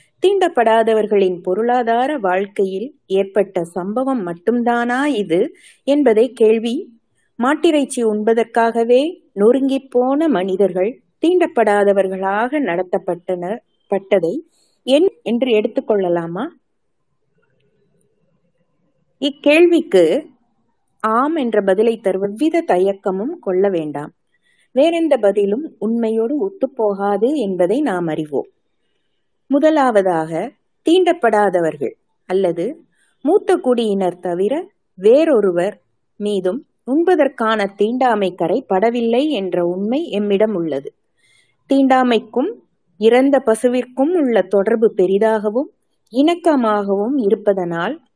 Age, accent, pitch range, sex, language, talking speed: 20-39, native, 195-270 Hz, female, Tamil, 70 wpm